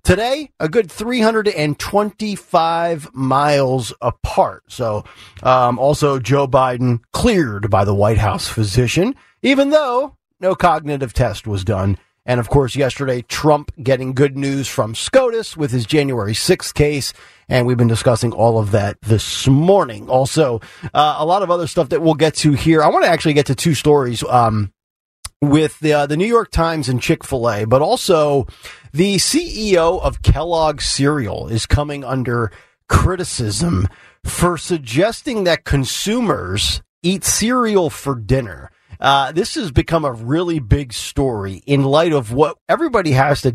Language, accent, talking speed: English, American, 160 wpm